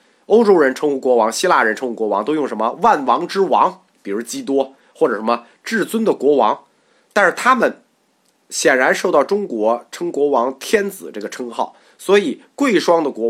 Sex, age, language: male, 30-49, Chinese